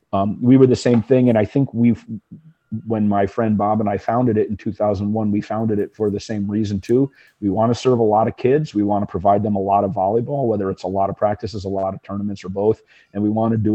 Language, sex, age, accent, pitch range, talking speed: English, male, 40-59, American, 100-110 Hz, 270 wpm